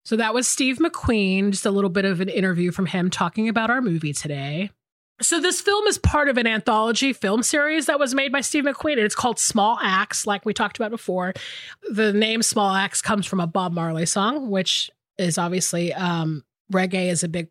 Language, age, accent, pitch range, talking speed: English, 30-49, American, 185-250 Hz, 215 wpm